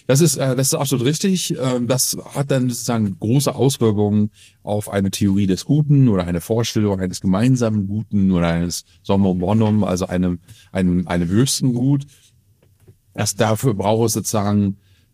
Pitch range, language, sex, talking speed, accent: 95-120 Hz, German, male, 150 wpm, German